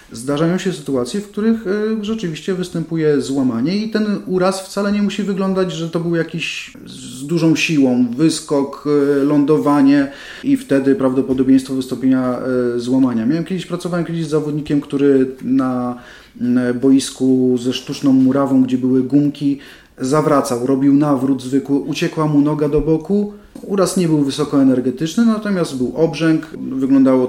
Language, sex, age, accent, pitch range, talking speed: Polish, male, 30-49, native, 130-175 Hz, 135 wpm